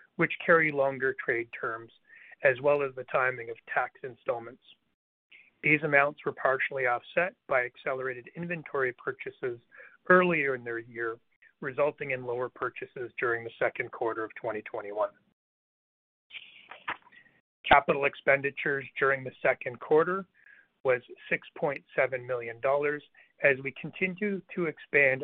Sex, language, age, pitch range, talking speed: male, English, 40-59, 125-160 Hz, 120 wpm